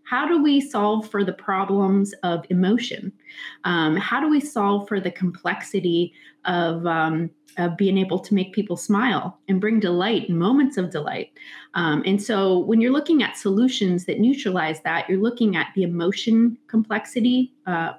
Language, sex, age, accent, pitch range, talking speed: English, female, 30-49, American, 170-210 Hz, 165 wpm